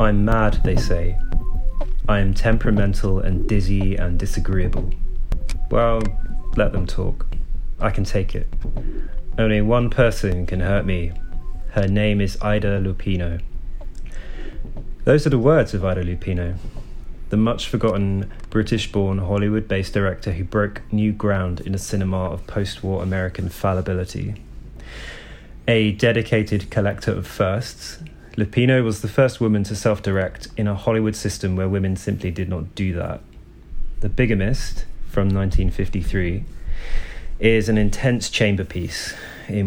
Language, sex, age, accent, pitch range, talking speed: English, male, 20-39, British, 95-110 Hz, 130 wpm